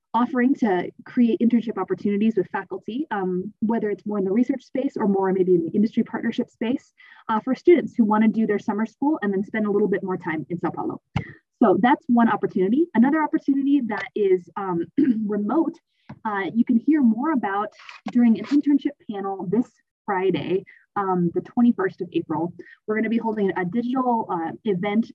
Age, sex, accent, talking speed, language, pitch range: 20-39, female, American, 190 wpm, English, 185-245 Hz